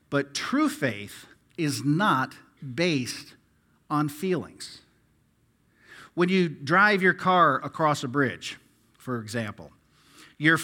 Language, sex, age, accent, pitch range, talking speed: English, male, 50-69, American, 140-170 Hz, 105 wpm